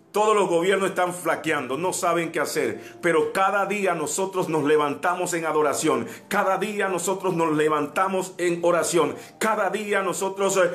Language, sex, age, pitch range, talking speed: Spanish, male, 50-69, 165-195 Hz, 150 wpm